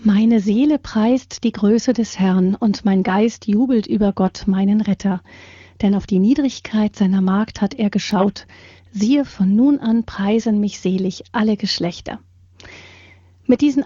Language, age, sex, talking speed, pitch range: German, 40-59, female, 150 wpm, 185-230 Hz